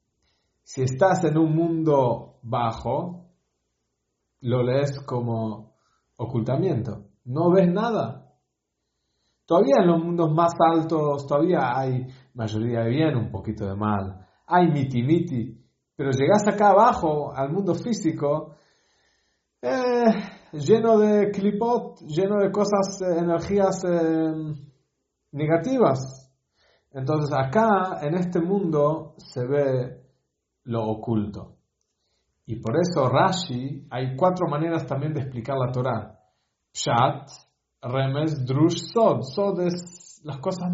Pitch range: 135-195 Hz